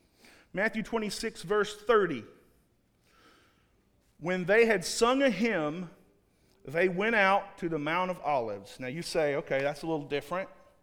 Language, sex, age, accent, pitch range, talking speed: English, male, 40-59, American, 150-200 Hz, 145 wpm